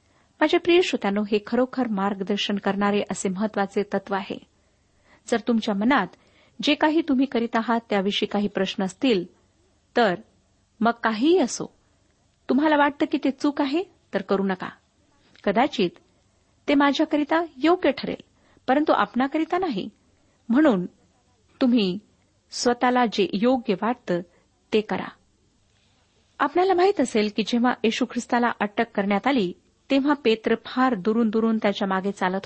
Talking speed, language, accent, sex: 125 wpm, Marathi, native, female